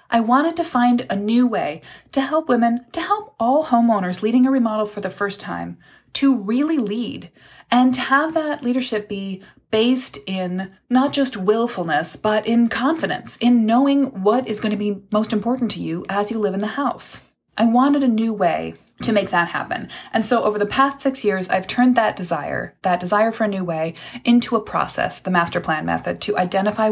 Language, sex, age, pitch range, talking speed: English, female, 20-39, 185-240 Hz, 200 wpm